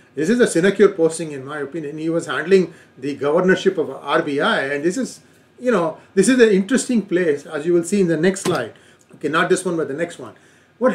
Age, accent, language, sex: 40-59, Indian, English, male